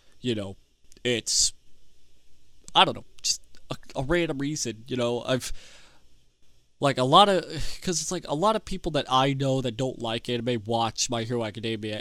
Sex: male